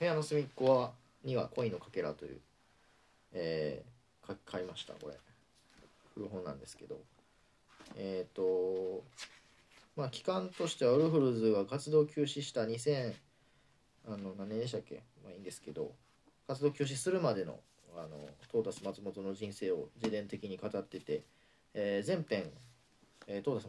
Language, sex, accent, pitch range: Japanese, male, native, 105-140 Hz